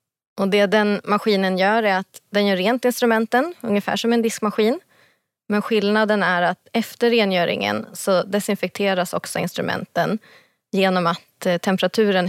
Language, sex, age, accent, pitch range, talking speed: Swedish, female, 20-39, native, 180-215 Hz, 135 wpm